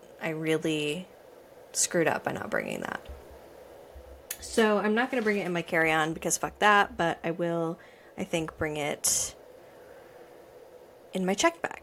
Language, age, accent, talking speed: English, 20-39, American, 165 wpm